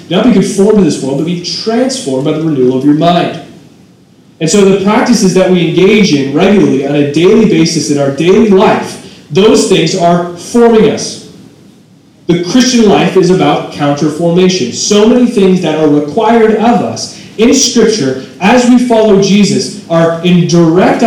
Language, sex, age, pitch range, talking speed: English, male, 30-49, 155-200 Hz, 170 wpm